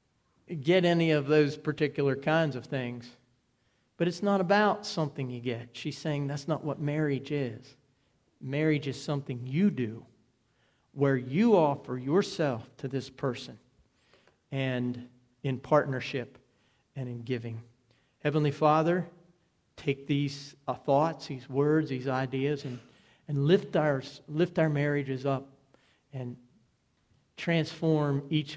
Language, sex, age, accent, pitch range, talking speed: English, male, 50-69, American, 130-145 Hz, 130 wpm